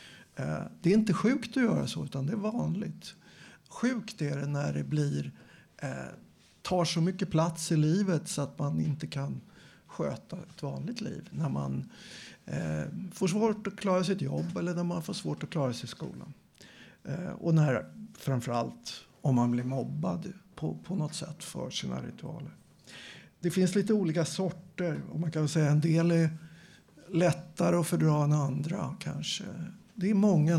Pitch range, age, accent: 145-180 Hz, 60-79, native